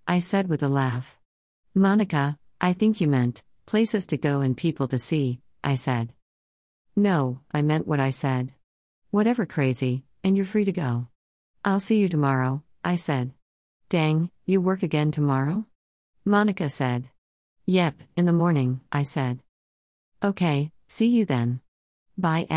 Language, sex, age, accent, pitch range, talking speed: English, female, 50-69, American, 130-180 Hz, 150 wpm